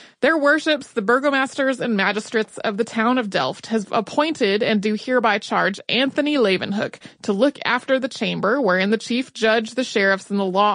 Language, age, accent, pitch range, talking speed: English, 30-49, American, 215-285 Hz, 185 wpm